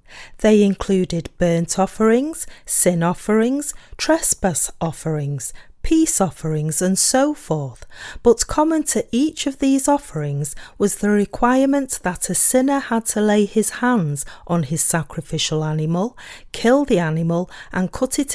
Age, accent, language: 40-59, British, English